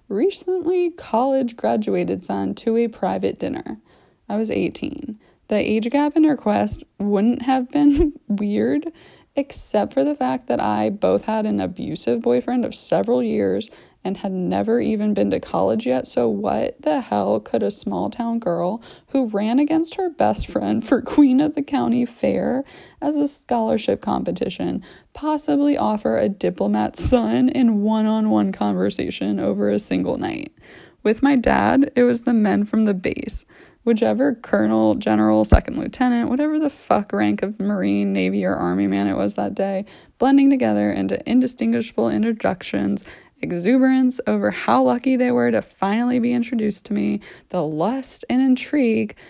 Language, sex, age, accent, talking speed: English, female, 20-39, American, 160 wpm